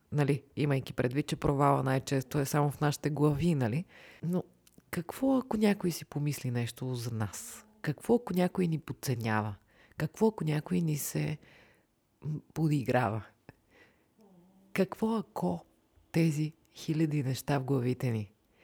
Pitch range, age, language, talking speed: 135-180 Hz, 30-49, Bulgarian, 130 wpm